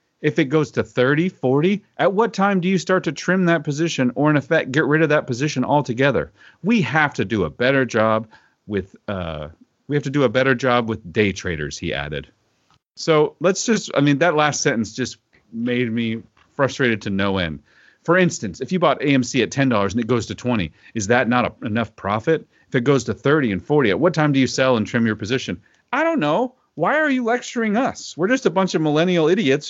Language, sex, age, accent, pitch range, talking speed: English, male, 40-59, American, 115-165 Hz, 225 wpm